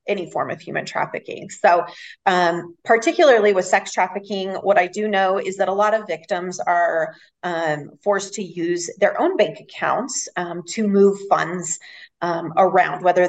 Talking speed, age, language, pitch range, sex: 165 wpm, 30-49, English, 170-205 Hz, female